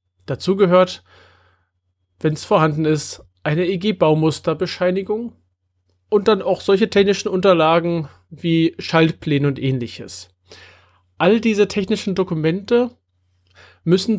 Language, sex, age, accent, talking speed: German, male, 30-49, German, 95 wpm